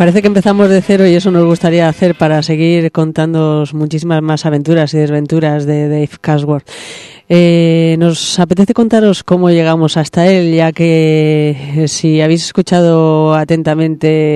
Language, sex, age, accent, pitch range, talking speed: Spanish, female, 30-49, Spanish, 150-170 Hz, 150 wpm